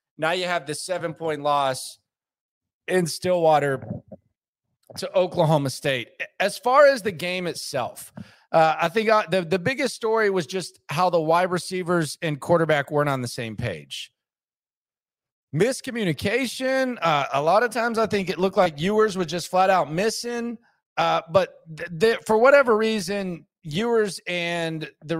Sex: male